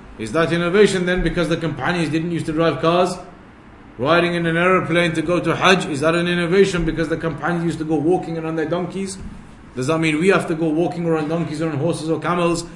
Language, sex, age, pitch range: English, male, 30-49, 160-200 Hz